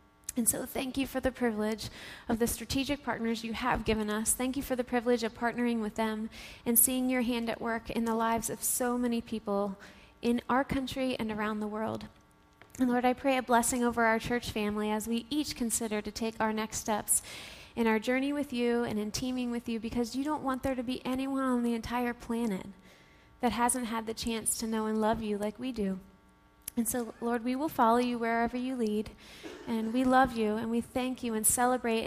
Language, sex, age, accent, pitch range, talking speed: English, female, 20-39, American, 220-250 Hz, 220 wpm